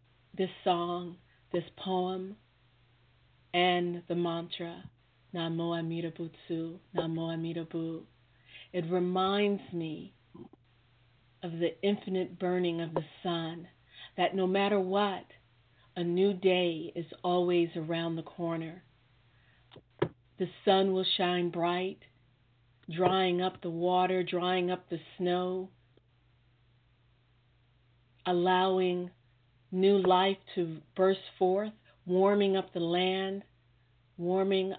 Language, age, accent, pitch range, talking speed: English, 50-69, American, 125-180 Hz, 100 wpm